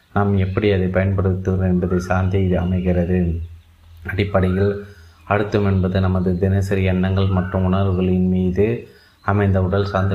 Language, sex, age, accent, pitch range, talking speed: Tamil, male, 30-49, native, 90-100 Hz, 110 wpm